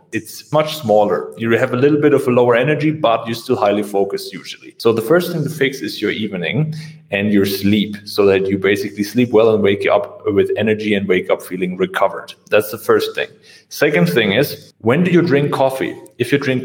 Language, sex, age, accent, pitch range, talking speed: English, male, 30-49, German, 110-145 Hz, 220 wpm